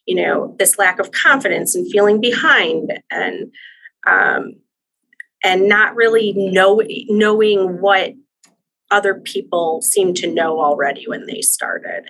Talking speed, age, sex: 125 wpm, 30-49, female